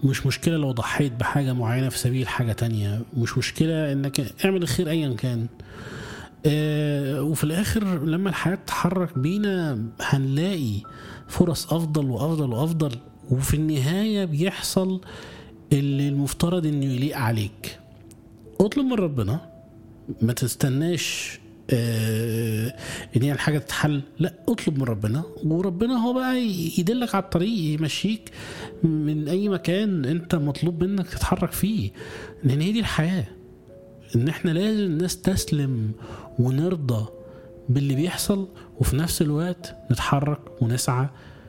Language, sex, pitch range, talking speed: Arabic, male, 120-170 Hz, 120 wpm